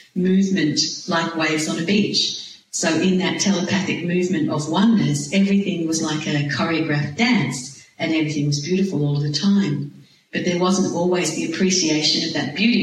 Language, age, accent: English, 50-69, Australian